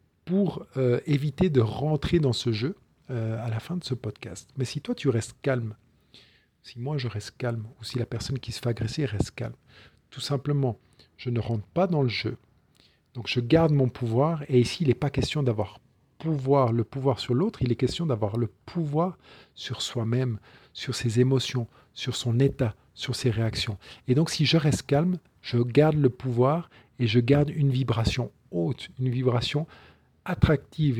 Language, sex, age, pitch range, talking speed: French, male, 50-69, 120-140 Hz, 190 wpm